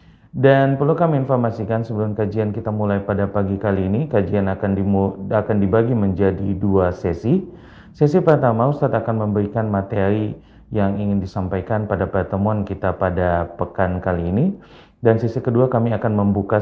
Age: 30-49